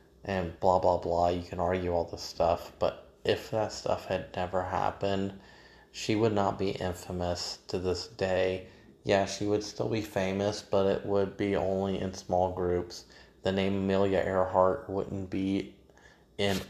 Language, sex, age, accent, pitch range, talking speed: English, male, 30-49, American, 90-100 Hz, 165 wpm